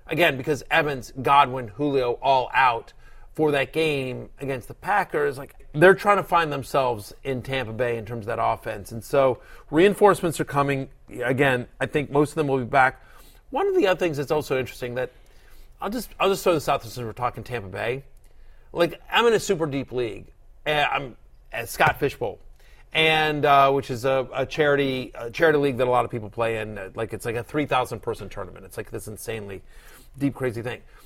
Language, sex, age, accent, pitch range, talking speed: English, male, 40-59, American, 115-165 Hz, 205 wpm